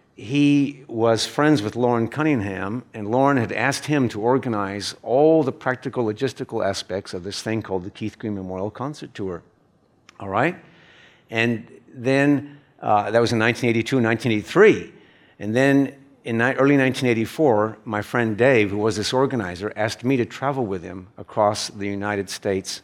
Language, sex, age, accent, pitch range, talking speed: English, male, 50-69, American, 105-135 Hz, 160 wpm